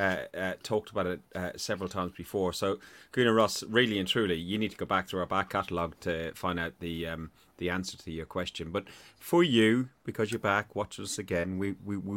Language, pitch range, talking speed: English, 95-120 Hz, 220 wpm